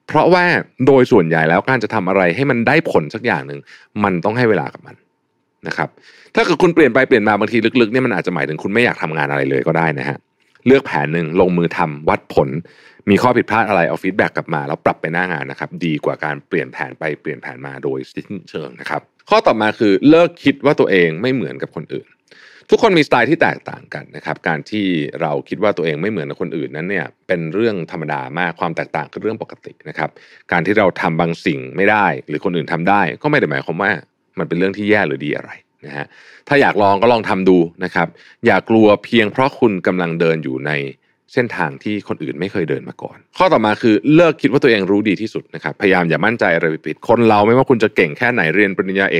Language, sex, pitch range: Thai, male, 85-115 Hz